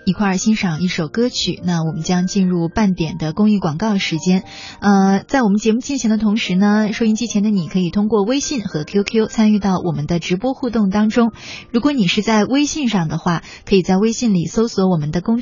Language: Chinese